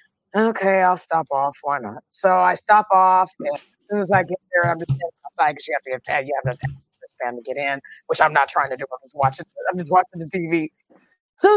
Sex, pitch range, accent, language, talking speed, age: female, 155-210 Hz, American, English, 255 wpm, 20-39